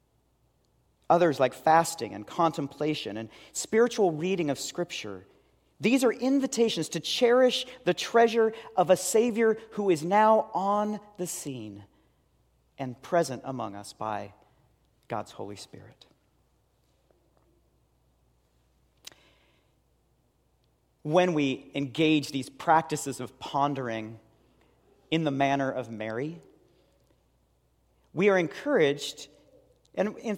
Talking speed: 100 wpm